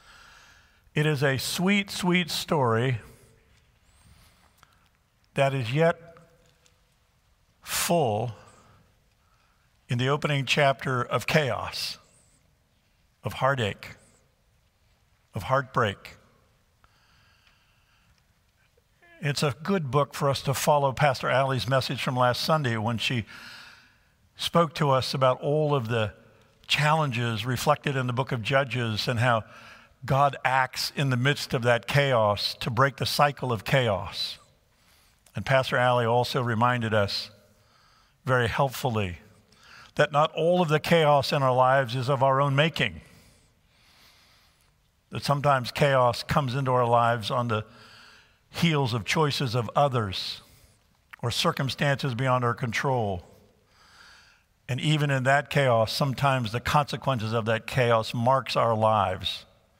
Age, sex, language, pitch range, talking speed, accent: 50-69, male, English, 110-145 Hz, 120 wpm, American